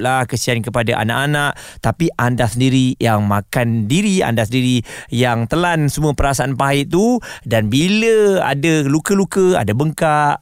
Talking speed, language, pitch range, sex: 140 wpm, Malay, 125-170 Hz, male